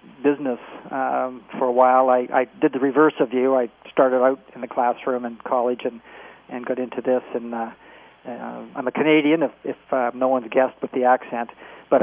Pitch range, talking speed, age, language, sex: 120-130 Hz, 210 wpm, 40-59, English, male